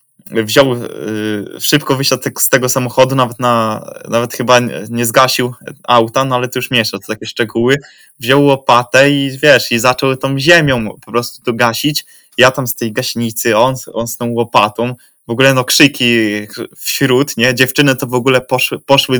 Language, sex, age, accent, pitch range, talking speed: Polish, male, 20-39, native, 115-130 Hz, 170 wpm